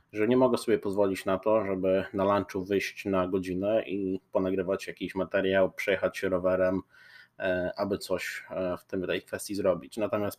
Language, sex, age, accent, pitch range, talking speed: Polish, male, 20-39, native, 95-110 Hz, 155 wpm